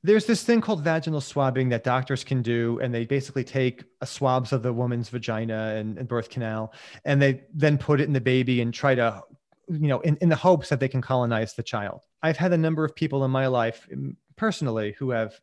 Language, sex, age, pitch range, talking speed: English, male, 30-49, 120-155 Hz, 230 wpm